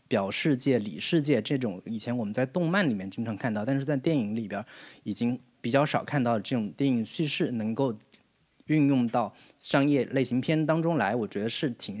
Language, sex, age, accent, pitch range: Chinese, male, 20-39, native, 115-150 Hz